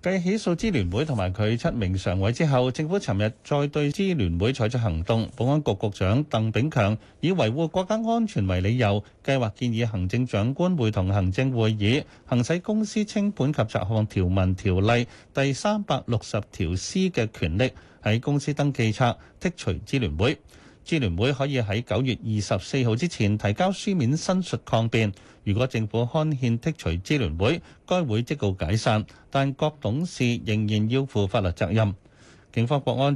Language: Chinese